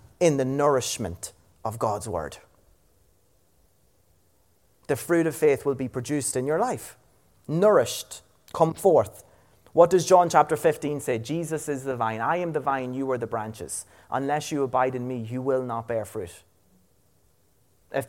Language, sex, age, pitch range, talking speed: English, male, 30-49, 100-150 Hz, 160 wpm